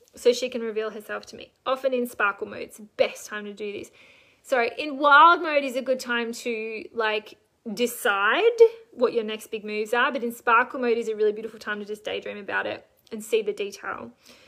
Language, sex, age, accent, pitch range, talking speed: English, female, 20-39, Australian, 220-265 Hz, 220 wpm